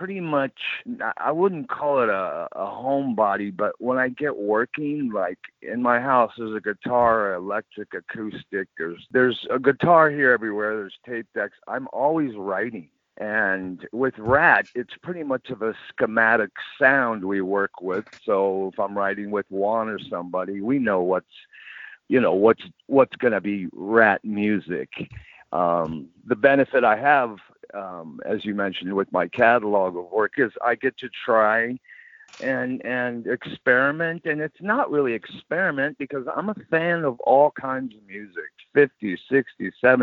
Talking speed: 160 wpm